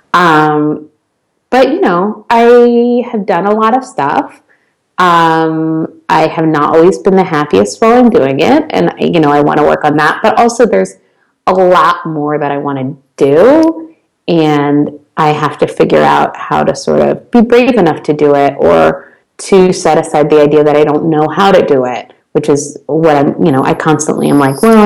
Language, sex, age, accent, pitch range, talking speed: English, female, 30-49, American, 140-175 Hz, 205 wpm